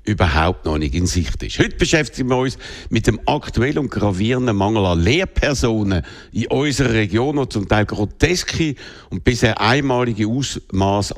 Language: German